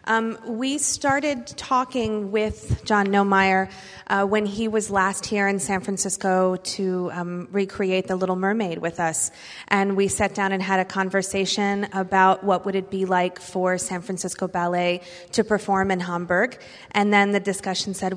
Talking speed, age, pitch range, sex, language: 170 wpm, 30-49, 185-210 Hz, female, English